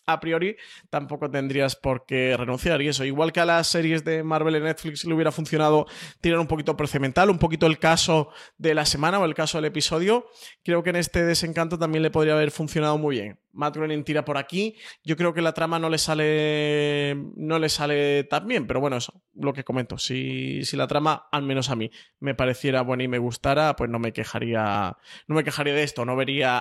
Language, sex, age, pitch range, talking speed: Spanish, male, 20-39, 130-160 Hz, 220 wpm